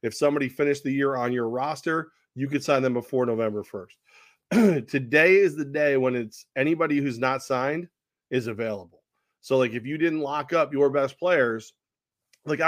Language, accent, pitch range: English, American, 120-140 Hz